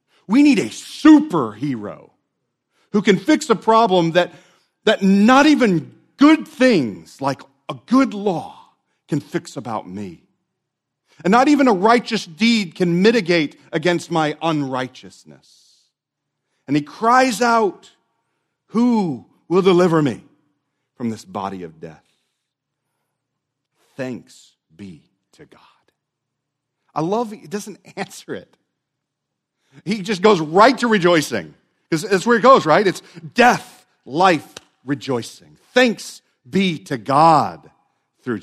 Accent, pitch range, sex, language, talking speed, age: American, 130-205 Hz, male, English, 125 wpm, 40-59